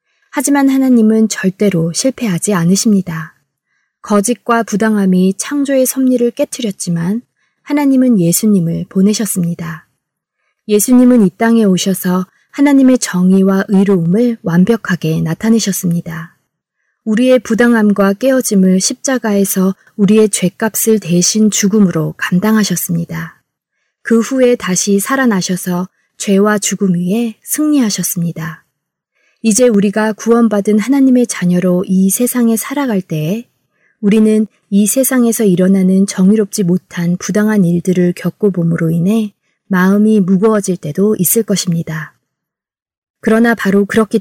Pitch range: 180-225 Hz